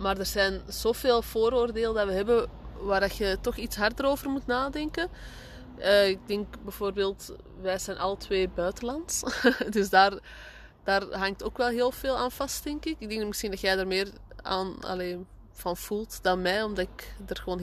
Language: Dutch